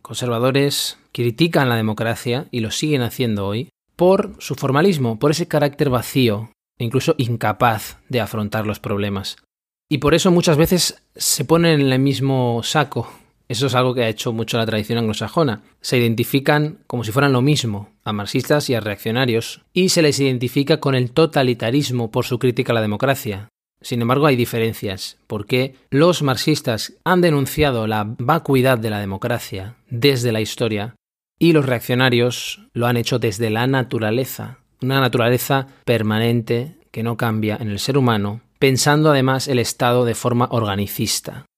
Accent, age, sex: Spanish, 20-39, male